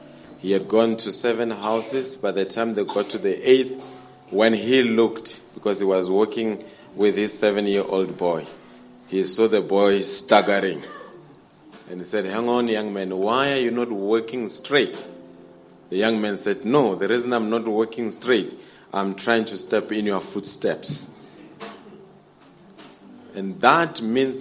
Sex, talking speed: male, 155 wpm